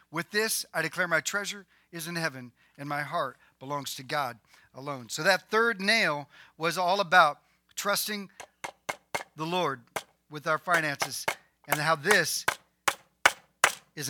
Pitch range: 145-190 Hz